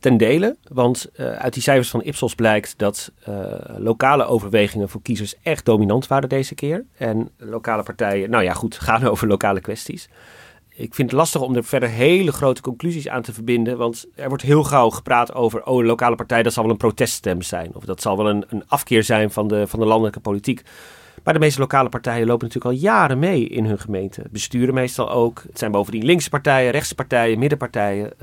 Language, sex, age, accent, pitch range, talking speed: Dutch, male, 40-59, Dutch, 110-130 Hz, 210 wpm